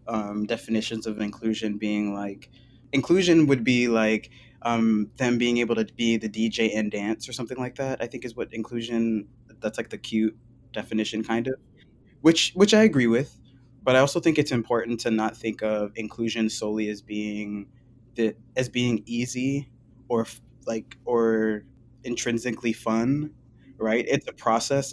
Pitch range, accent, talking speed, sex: 110-120 Hz, American, 165 wpm, male